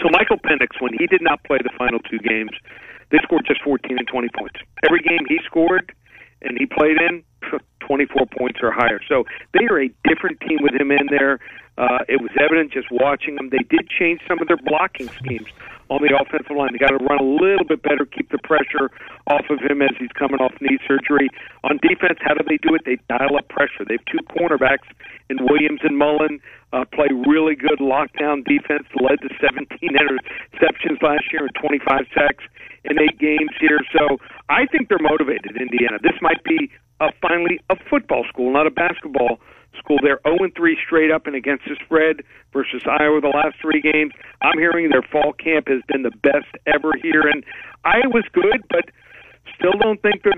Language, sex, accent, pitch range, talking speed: English, male, American, 135-165 Hz, 200 wpm